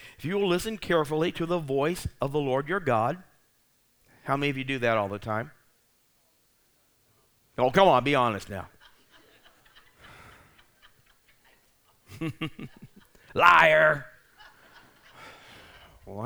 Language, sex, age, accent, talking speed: English, male, 60-79, American, 110 wpm